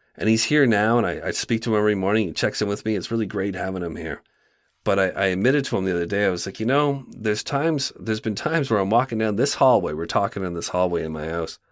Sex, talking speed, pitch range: male, 285 wpm, 95-115 Hz